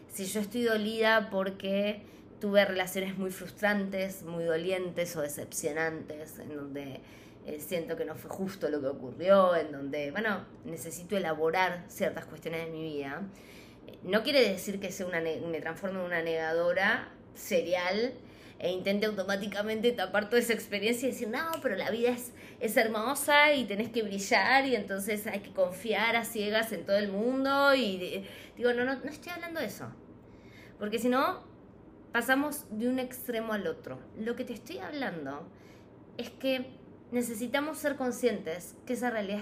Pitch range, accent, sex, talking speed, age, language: 170-235 Hz, Argentinian, female, 170 wpm, 20-39, Spanish